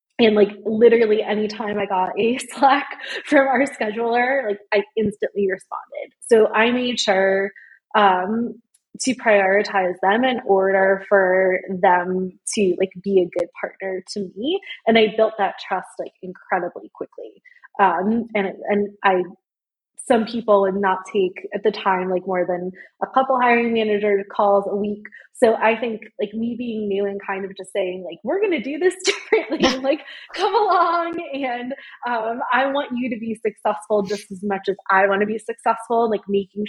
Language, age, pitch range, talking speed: English, 20-39, 195-235 Hz, 170 wpm